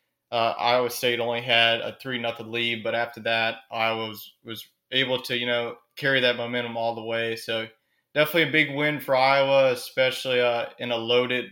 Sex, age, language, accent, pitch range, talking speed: male, 20-39, English, American, 115-130 Hz, 195 wpm